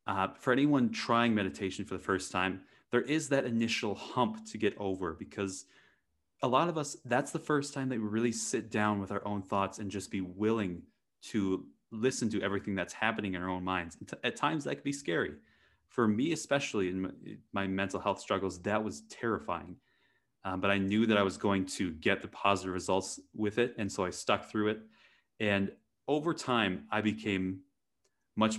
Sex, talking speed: male, 200 wpm